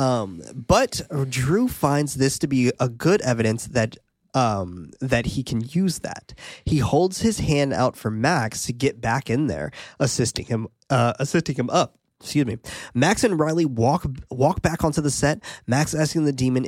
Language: English